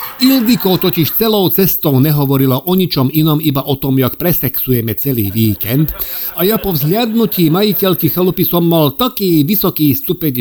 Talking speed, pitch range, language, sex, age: 150 wpm, 130-180 Hz, Slovak, male, 50-69